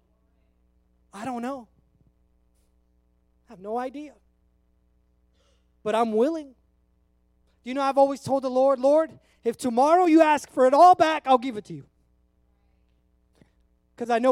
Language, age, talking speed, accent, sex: English, 30-49, 145 wpm, American, male